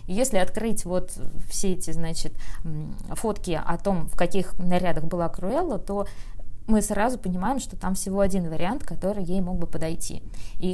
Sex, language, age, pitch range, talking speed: female, Russian, 20-39, 170-205 Hz, 160 wpm